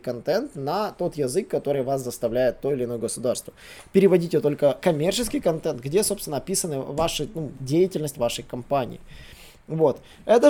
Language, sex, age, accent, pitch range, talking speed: Russian, male, 20-39, native, 130-190 Hz, 145 wpm